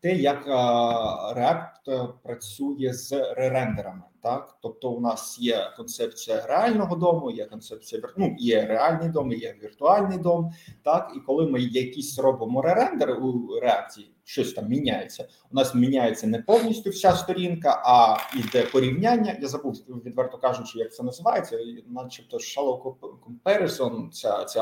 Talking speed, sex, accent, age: 135 wpm, male, native, 30-49